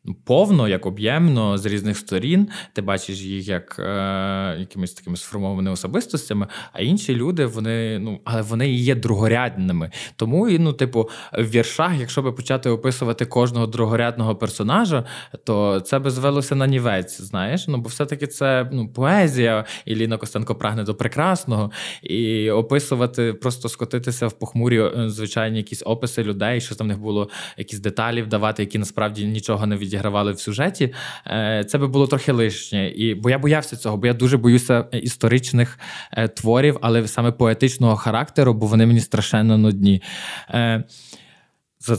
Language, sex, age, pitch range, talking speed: Ukrainian, male, 20-39, 105-125 Hz, 155 wpm